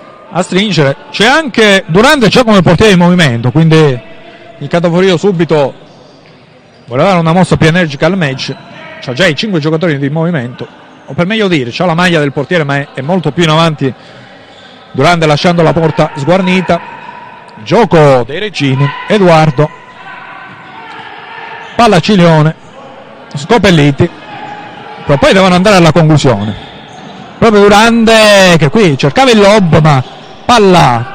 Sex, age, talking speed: male, 40-59, 135 wpm